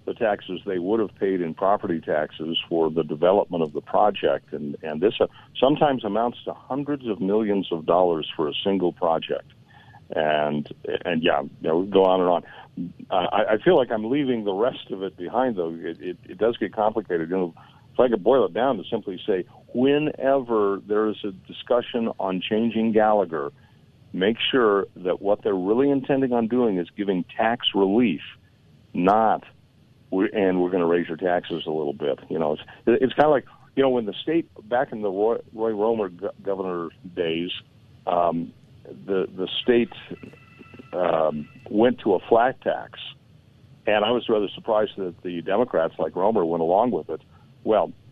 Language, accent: English, American